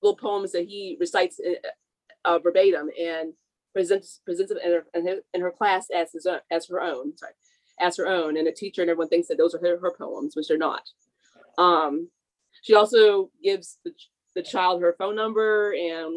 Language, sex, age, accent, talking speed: English, female, 30-49, American, 190 wpm